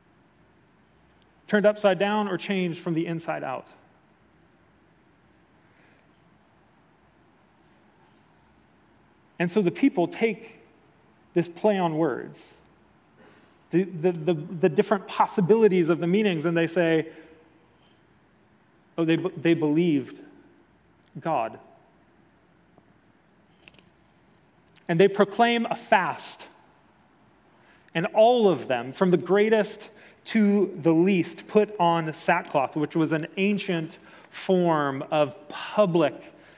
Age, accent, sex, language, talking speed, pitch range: 30-49, American, male, English, 95 wpm, 155-190 Hz